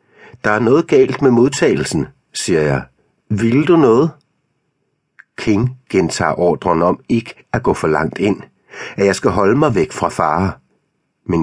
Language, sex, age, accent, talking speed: Danish, male, 60-79, native, 160 wpm